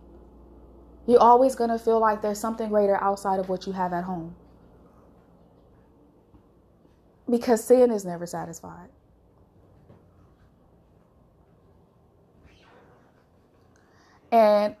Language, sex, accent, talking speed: English, female, American, 90 wpm